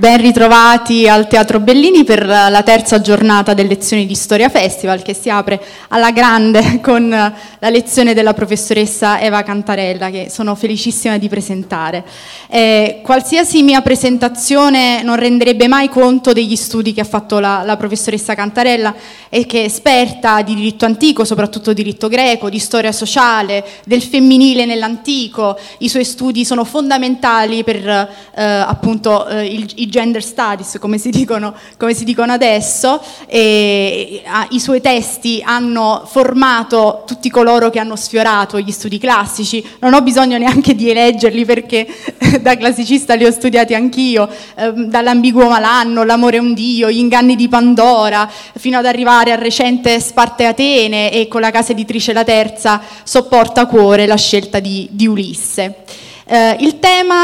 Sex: female